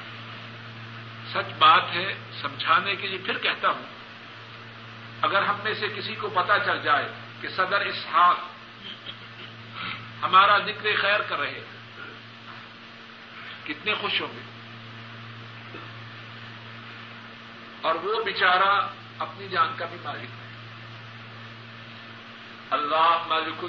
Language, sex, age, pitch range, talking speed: Urdu, male, 50-69, 115-120 Hz, 105 wpm